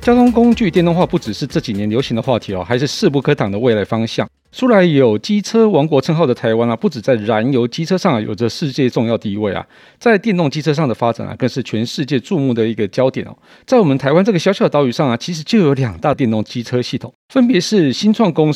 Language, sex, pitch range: Chinese, male, 115-175 Hz